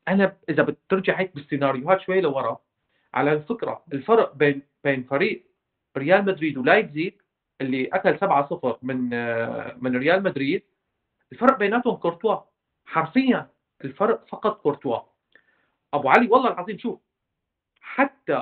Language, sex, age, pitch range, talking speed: Arabic, male, 40-59, 145-200 Hz, 115 wpm